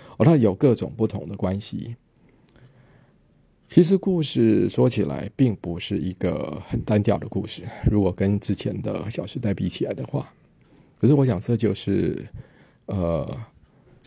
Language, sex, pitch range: Chinese, male, 100-115 Hz